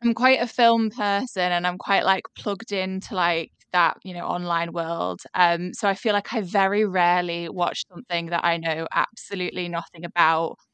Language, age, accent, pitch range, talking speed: English, 20-39, British, 170-195 Hz, 185 wpm